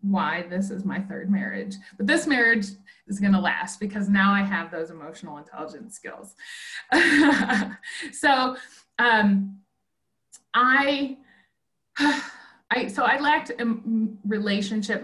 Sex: female